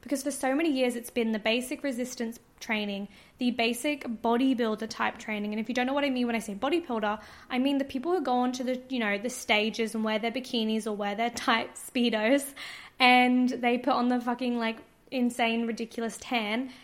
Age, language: 20-39, English